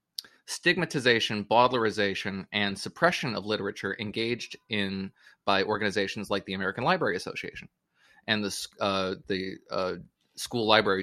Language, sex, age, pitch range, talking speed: English, male, 30-49, 100-120 Hz, 120 wpm